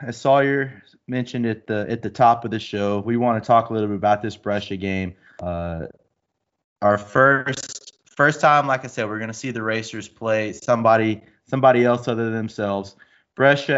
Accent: American